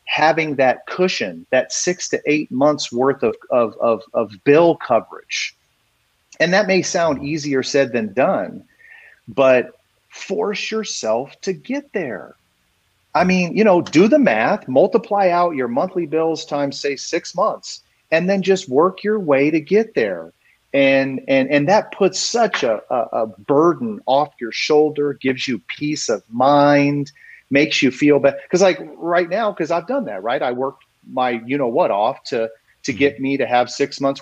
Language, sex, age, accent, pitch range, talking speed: English, male, 40-59, American, 125-170 Hz, 175 wpm